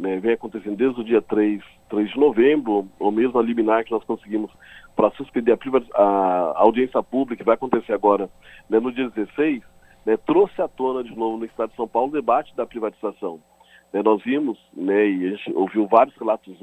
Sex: male